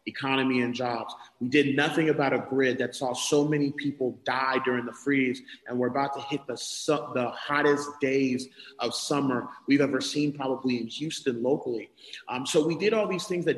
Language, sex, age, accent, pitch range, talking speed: English, male, 30-49, American, 140-180 Hz, 200 wpm